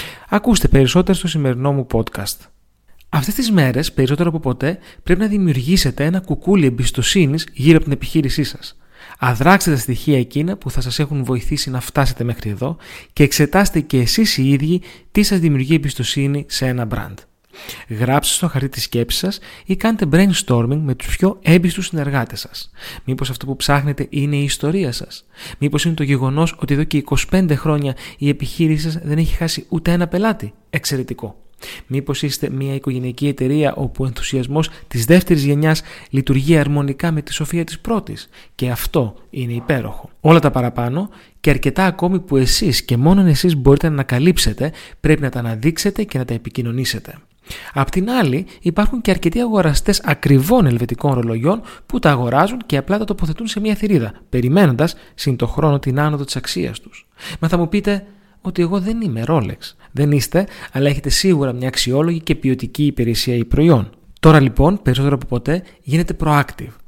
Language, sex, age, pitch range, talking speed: Greek, male, 30-49, 130-170 Hz, 170 wpm